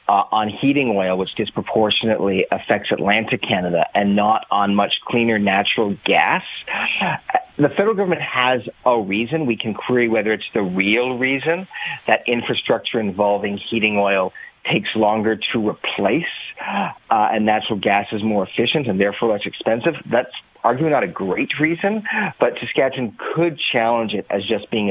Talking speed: 155 wpm